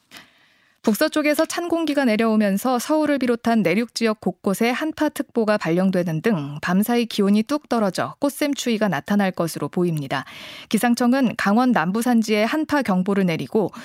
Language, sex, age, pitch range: Korean, female, 20-39, 185-250 Hz